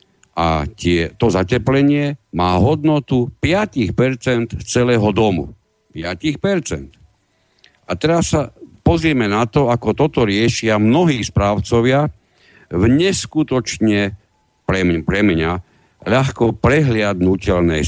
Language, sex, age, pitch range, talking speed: Slovak, male, 60-79, 95-130 Hz, 95 wpm